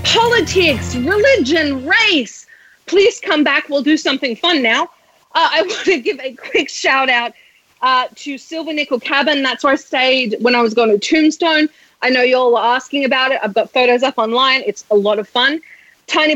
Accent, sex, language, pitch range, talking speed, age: Australian, female, English, 235-315 Hz, 200 wpm, 30-49